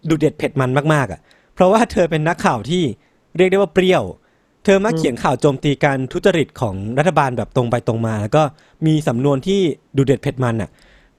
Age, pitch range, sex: 20-39, 125-180 Hz, male